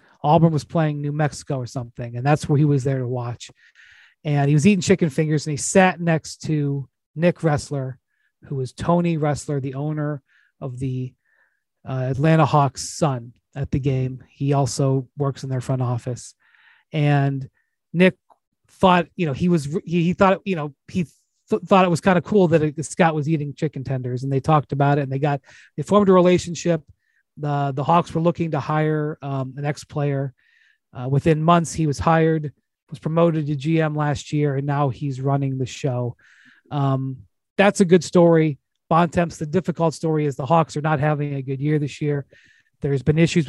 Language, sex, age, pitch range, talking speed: English, male, 30-49, 140-165 Hz, 195 wpm